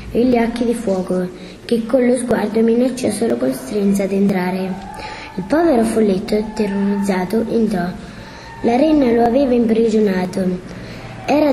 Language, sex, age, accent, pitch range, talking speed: Italian, female, 20-39, native, 195-245 Hz, 135 wpm